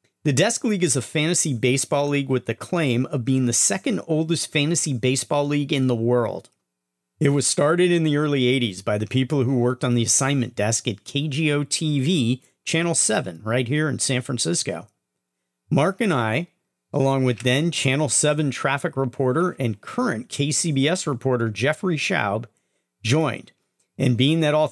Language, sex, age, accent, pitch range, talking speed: English, male, 40-59, American, 110-145 Hz, 170 wpm